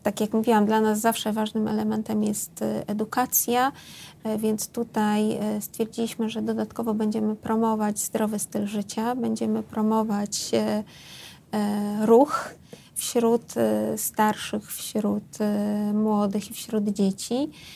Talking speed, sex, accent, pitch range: 100 wpm, female, native, 210-225 Hz